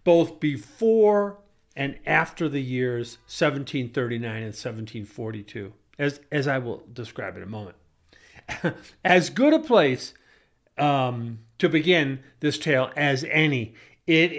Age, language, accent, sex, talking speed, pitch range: 50-69, English, American, male, 120 wpm, 125-160 Hz